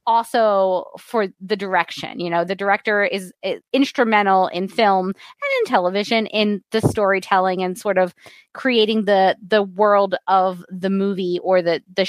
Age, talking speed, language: 20-39, 155 wpm, English